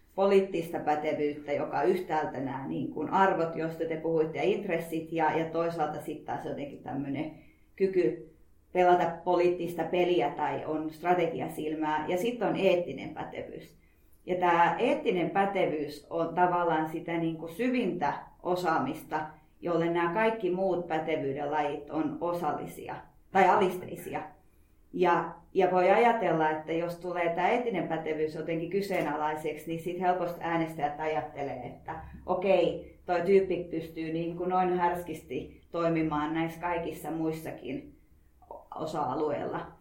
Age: 30-49